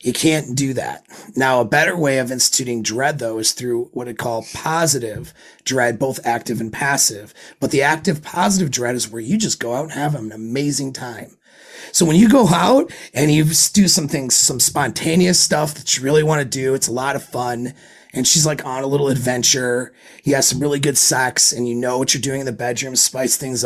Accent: American